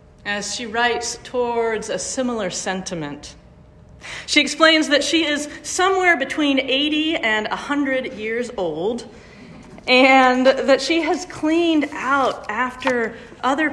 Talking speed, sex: 120 wpm, female